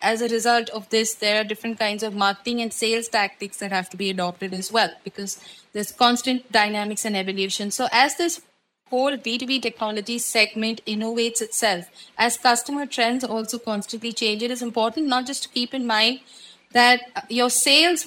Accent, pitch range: Indian, 210-255 Hz